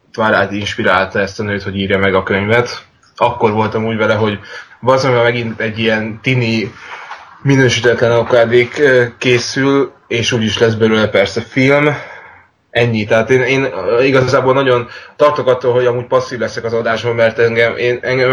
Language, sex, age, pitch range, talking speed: Hungarian, male, 20-39, 105-120 Hz, 155 wpm